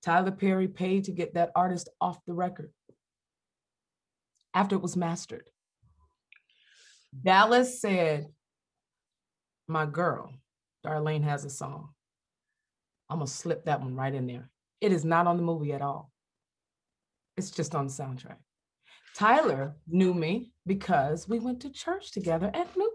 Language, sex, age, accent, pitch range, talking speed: English, female, 30-49, American, 155-255 Hz, 140 wpm